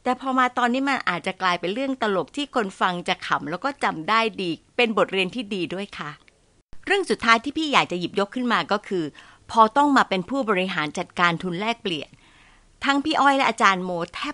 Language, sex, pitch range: Thai, female, 185-255 Hz